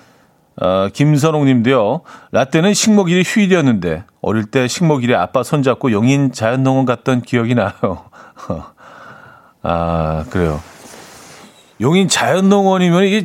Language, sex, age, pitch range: Korean, male, 40-59, 105-150 Hz